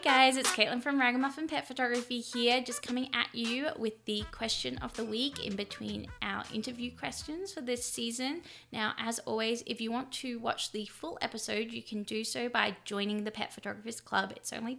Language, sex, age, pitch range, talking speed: English, female, 20-39, 200-245 Hz, 200 wpm